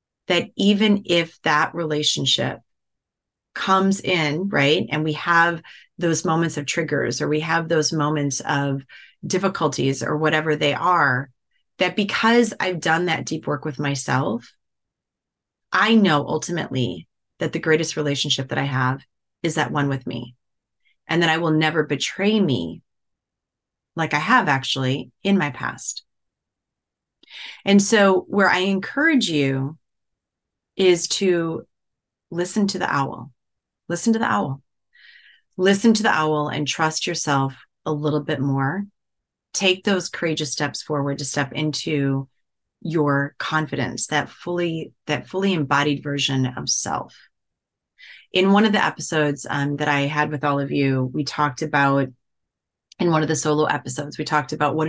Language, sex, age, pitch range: English, female, 30-49, 140-175 Hz